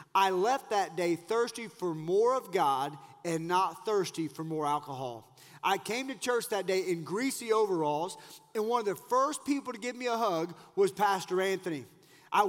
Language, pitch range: English, 195-270 Hz